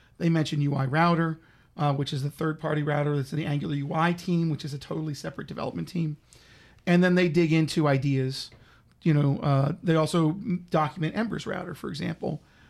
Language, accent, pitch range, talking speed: English, American, 145-175 Hz, 185 wpm